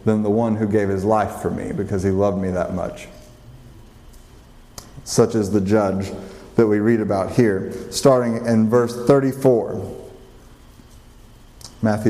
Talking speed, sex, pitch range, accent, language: 145 wpm, male, 110-150 Hz, American, English